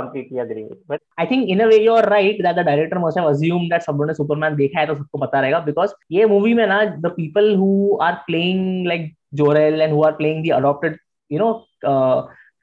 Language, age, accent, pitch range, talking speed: Hindi, 20-39, native, 155-200 Hz, 210 wpm